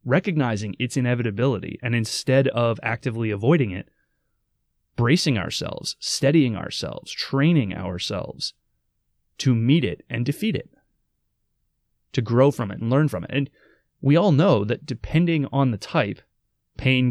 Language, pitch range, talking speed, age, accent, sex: English, 105-140 Hz, 135 wpm, 20-39, American, male